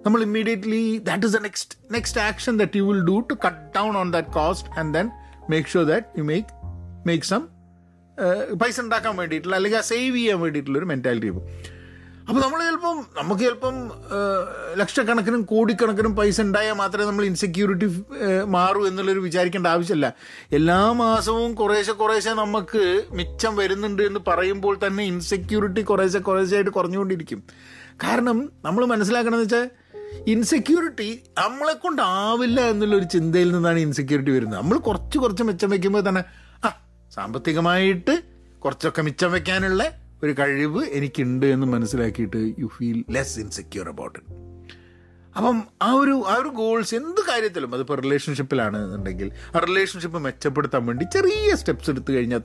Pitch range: 135-225 Hz